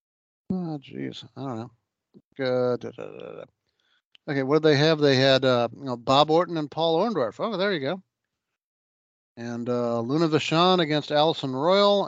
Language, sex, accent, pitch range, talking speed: English, male, American, 130-180 Hz, 160 wpm